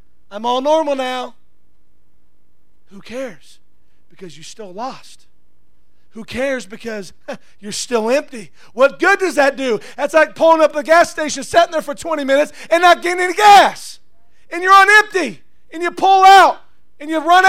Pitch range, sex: 215-330 Hz, male